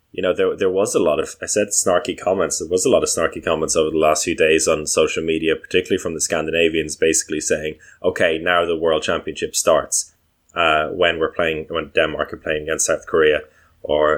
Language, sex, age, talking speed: English, male, 20-39, 215 wpm